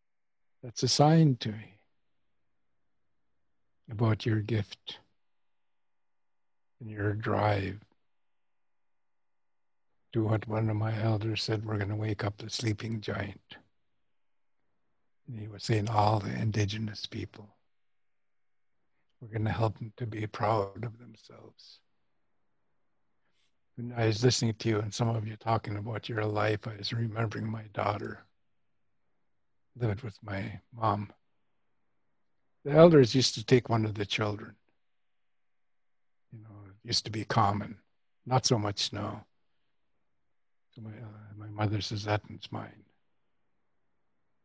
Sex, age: male, 60-79